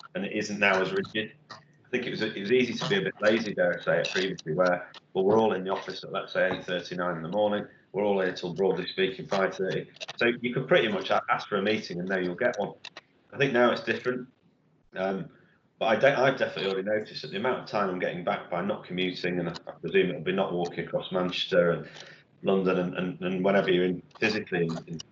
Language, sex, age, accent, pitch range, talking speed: English, male, 30-49, British, 90-125 Hz, 250 wpm